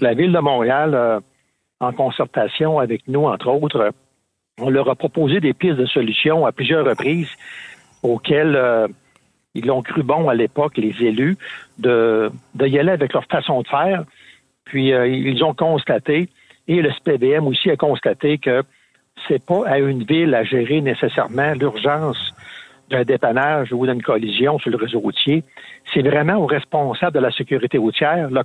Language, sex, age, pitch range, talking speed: French, male, 60-79, 125-155 Hz, 170 wpm